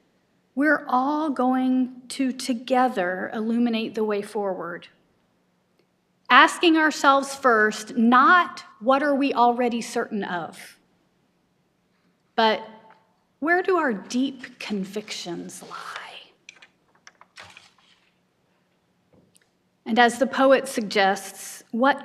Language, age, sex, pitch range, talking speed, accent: English, 40-59, female, 200-255 Hz, 85 wpm, American